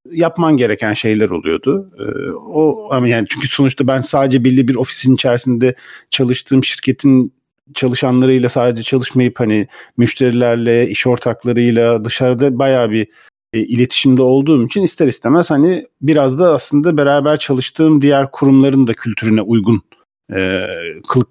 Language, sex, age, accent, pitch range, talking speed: Turkish, male, 50-69, native, 110-150 Hz, 120 wpm